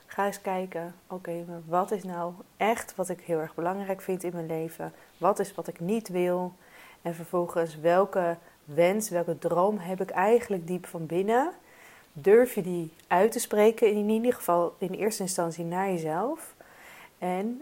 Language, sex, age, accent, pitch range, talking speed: Dutch, female, 30-49, Dutch, 165-195 Hz, 170 wpm